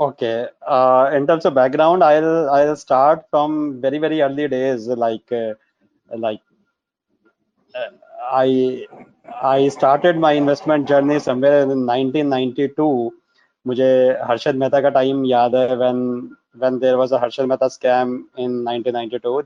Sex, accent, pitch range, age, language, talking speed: male, native, 130-155 Hz, 20-39, Tamil, 135 wpm